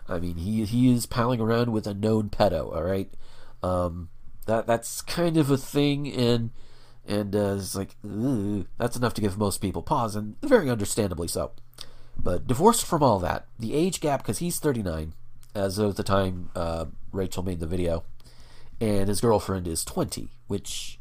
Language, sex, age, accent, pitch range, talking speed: English, male, 40-59, American, 90-125 Hz, 175 wpm